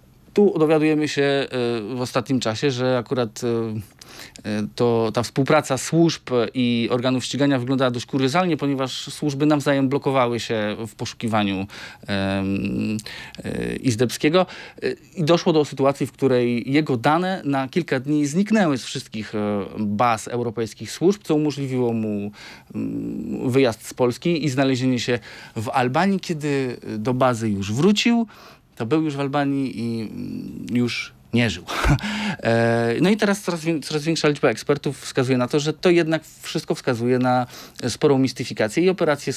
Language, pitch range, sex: Polish, 115-150 Hz, male